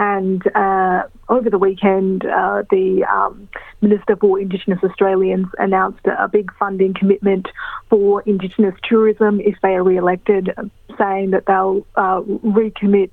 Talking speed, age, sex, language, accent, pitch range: 135 wpm, 30-49, female, English, Australian, 190-205 Hz